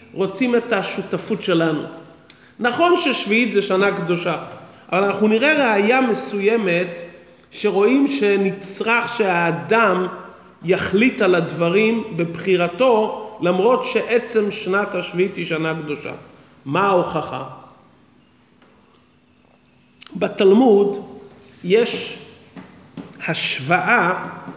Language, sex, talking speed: Hebrew, male, 80 wpm